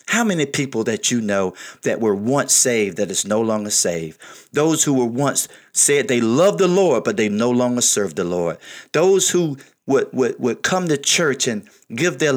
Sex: male